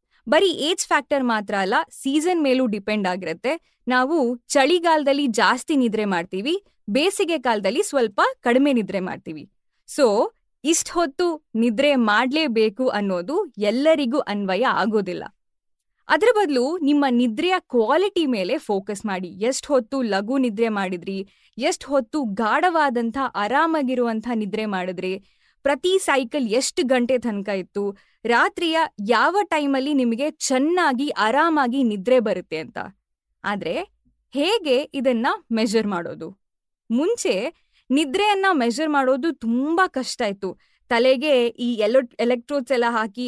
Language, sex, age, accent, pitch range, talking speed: Kannada, female, 20-39, native, 225-300 Hz, 110 wpm